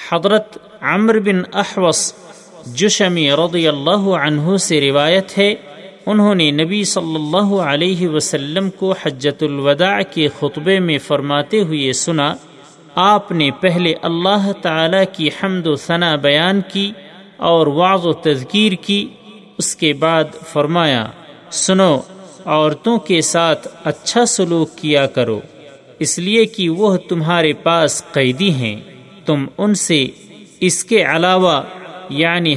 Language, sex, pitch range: Urdu, male, 150-190 Hz